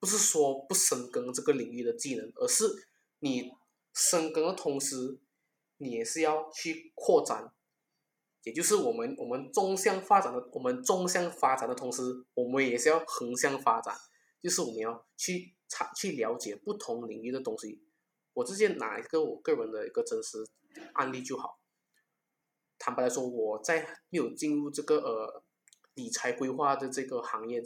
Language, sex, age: English, male, 20-39